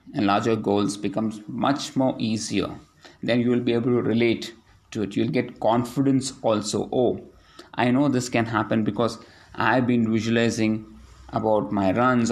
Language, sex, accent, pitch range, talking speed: English, male, Indian, 110-135 Hz, 160 wpm